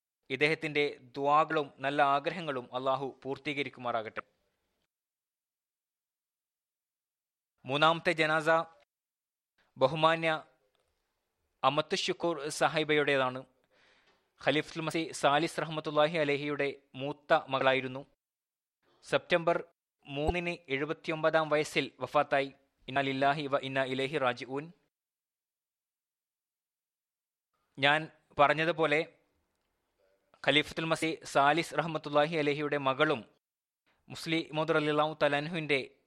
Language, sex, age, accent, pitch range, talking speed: Malayalam, male, 20-39, native, 130-155 Hz, 75 wpm